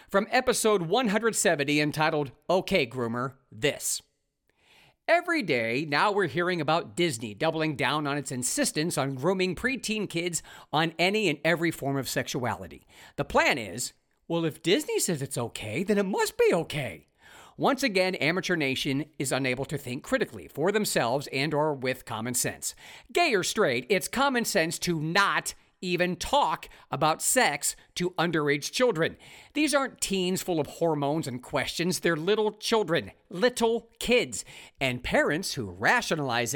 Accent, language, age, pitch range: American, English, 50-69, 145-235 Hz